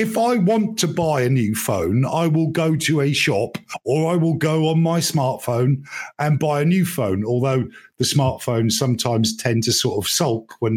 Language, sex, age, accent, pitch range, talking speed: English, male, 50-69, British, 120-160 Hz, 200 wpm